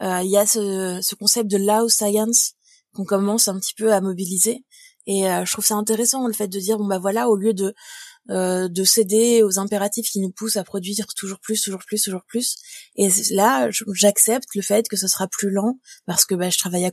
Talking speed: 230 wpm